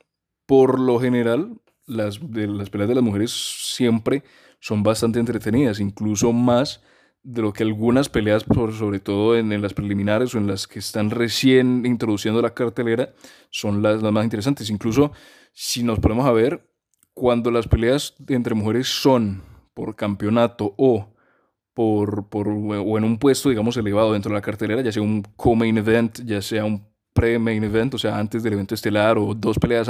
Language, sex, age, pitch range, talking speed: Spanish, male, 20-39, 105-125 Hz, 175 wpm